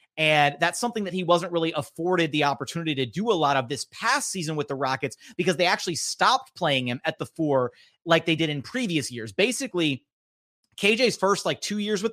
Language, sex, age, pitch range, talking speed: English, male, 30-49, 140-180 Hz, 215 wpm